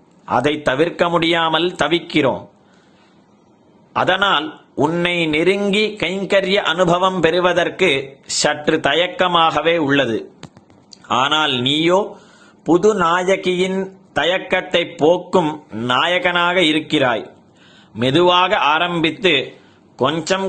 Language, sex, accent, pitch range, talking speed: Tamil, male, native, 160-190 Hz, 70 wpm